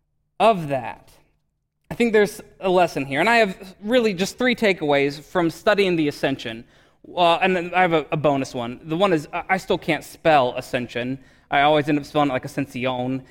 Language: English